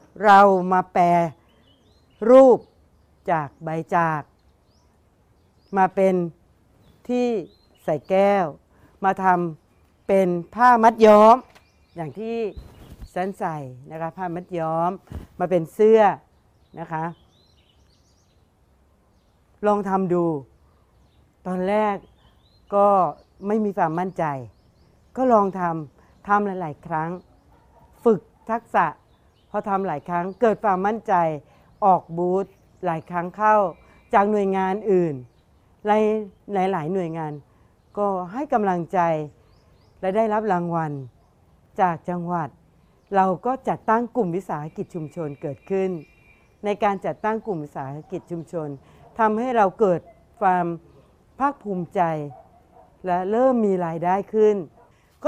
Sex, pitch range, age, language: female, 155-205 Hz, 60-79, Thai